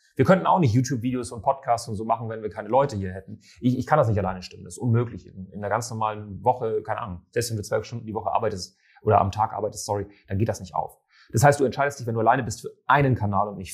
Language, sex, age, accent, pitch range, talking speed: German, male, 30-49, German, 105-135 Hz, 285 wpm